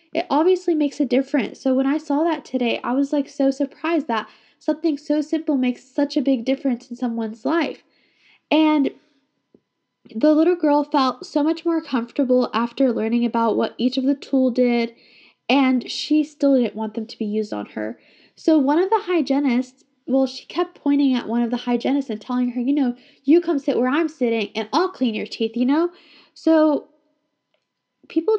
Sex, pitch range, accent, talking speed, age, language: female, 250-300 Hz, American, 190 wpm, 10-29, English